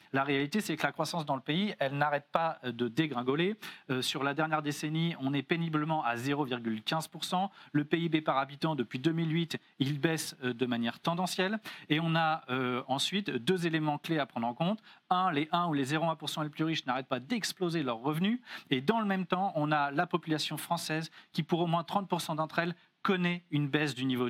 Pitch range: 140-185 Hz